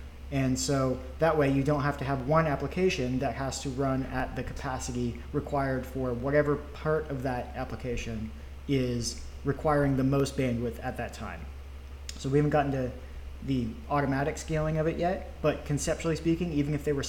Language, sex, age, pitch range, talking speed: English, male, 20-39, 110-145 Hz, 180 wpm